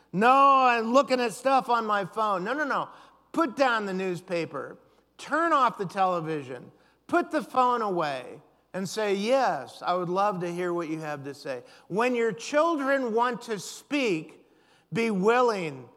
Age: 50-69